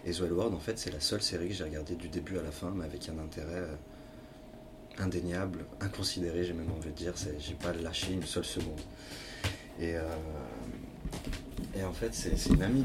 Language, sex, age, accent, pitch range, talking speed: French, male, 30-49, French, 80-95 Hz, 200 wpm